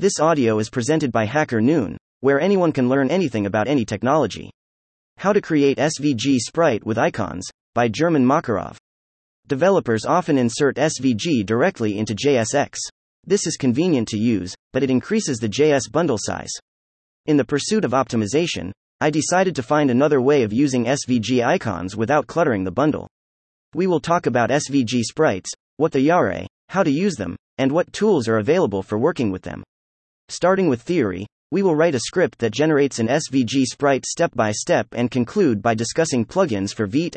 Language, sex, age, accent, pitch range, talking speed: English, male, 30-49, American, 110-155 Hz, 175 wpm